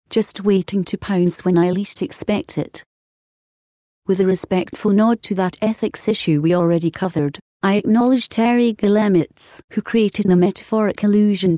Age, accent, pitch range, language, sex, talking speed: 40-59, British, 175-210 Hz, English, female, 150 wpm